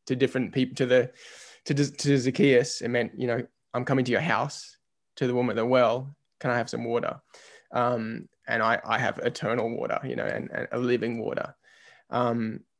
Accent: Australian